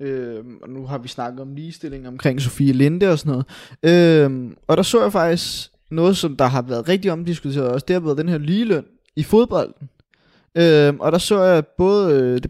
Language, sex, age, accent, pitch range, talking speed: Danish, male, 20-39, native, 135-175 Hz, 210 wpm